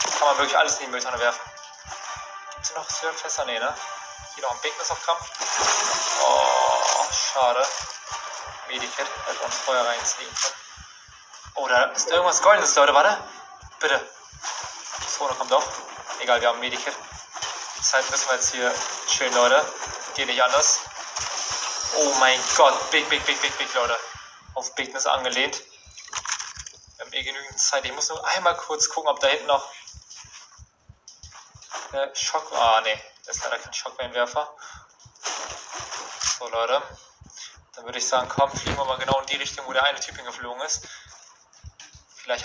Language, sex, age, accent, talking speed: German, male, 20-39, German, 155 wpm